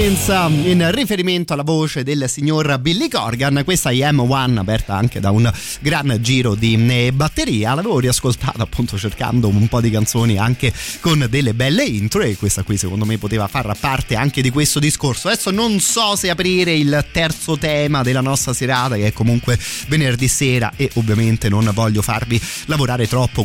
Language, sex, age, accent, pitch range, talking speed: Italian, male, 30-49, native, 110-145 Hz, 170 wpm